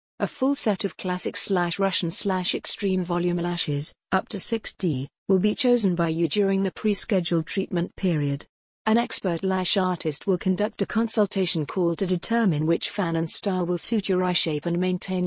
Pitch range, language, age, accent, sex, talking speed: 175-200 Hz, English, 50-69, British, female, 165 wpm